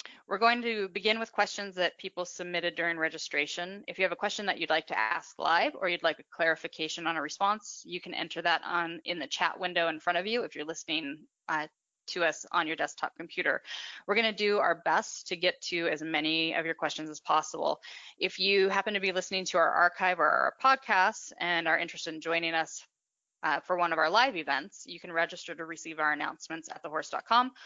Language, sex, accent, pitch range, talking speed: English, female, American, 160-190 Hz, 220 wpm